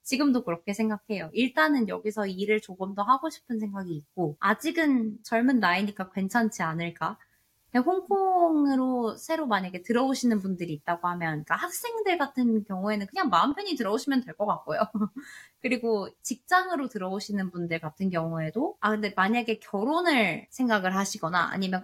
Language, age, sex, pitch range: Korean, 20-39, female, 180-255 Hz